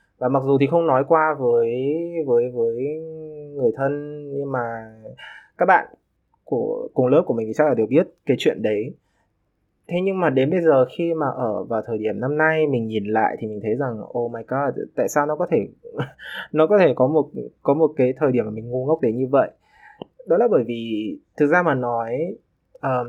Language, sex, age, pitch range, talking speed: Vietnamese, male, 20-39, 115-155 Hz, 220 wpm